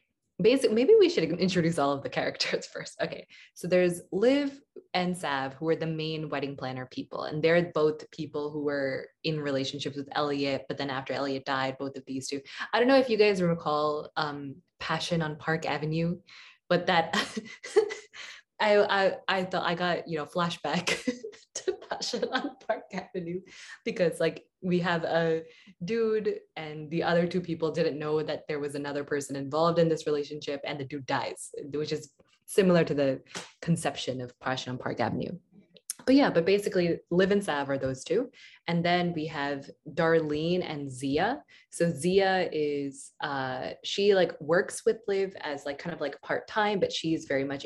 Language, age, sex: English, 20-39, female